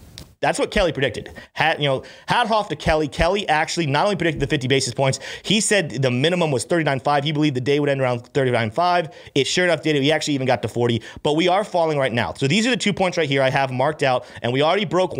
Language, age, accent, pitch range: English, 30-49, American, 125-160 Hz